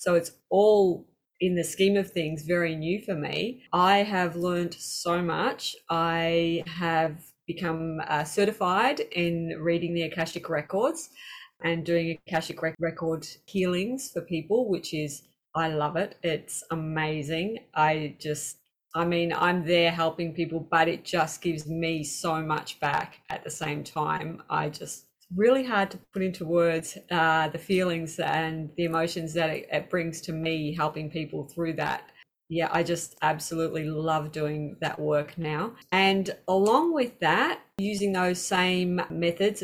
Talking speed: 155 wpm